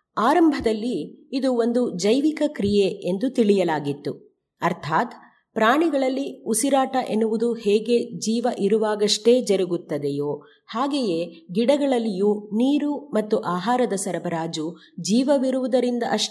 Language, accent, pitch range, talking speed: Kannada, native, 190-265 Hz, 80 wpm